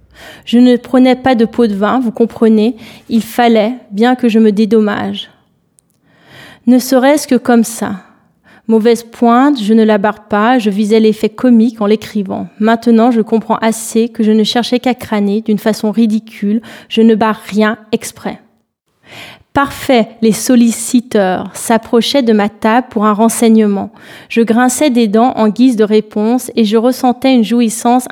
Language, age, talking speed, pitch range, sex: French, 20-39, 160 wpm, 220-245 Hz, female